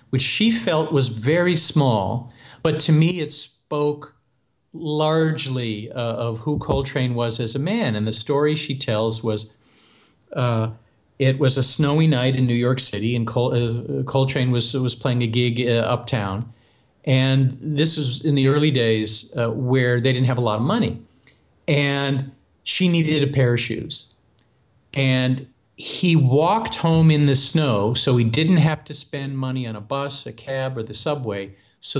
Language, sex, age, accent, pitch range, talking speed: English, male, 40-59, American, 115-150 Hz, 175 wpm